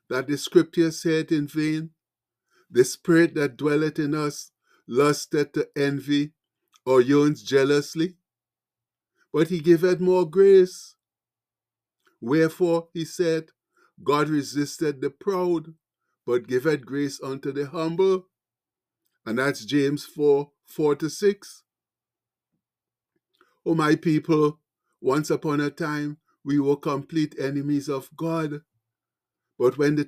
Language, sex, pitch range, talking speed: English, male, 145-165 Hz, 115 wpm